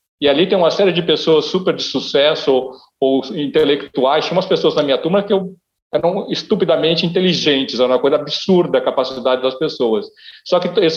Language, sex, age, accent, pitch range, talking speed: Portuguese, male, 40-59, Brazilian, 150-190 Hz, 190 wpm